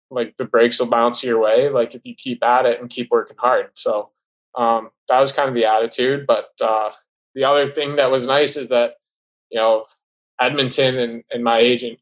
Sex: male